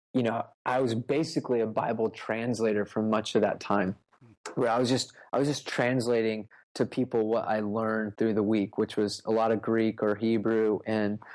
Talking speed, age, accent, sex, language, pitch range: 200 wpm, 20-39, American, male, English, 110-130 Hz